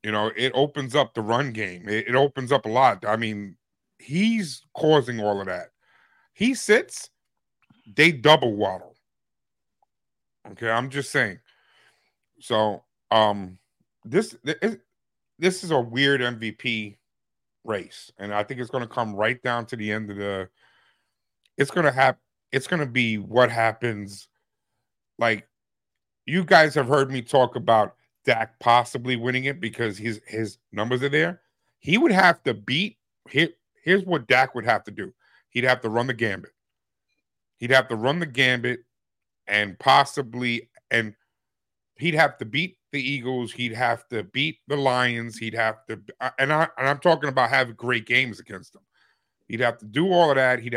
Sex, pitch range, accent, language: male, 110-140 Hz, American, English